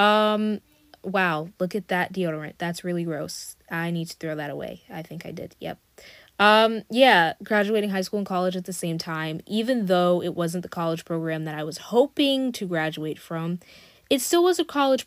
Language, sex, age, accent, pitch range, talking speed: English, female, 20-39, American, 170-210 Hz, 200 wpm